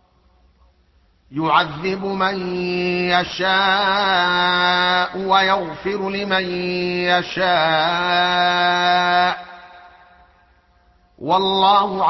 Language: Arabic